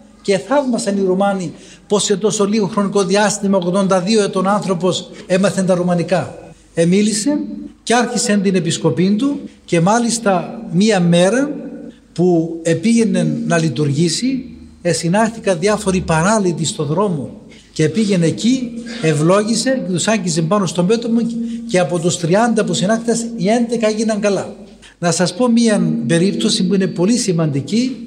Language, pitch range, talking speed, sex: Greek, 175-225 Hz, 135 wpm, male